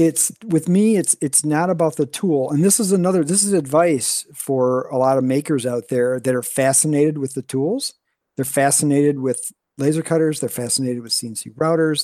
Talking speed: 195 wpm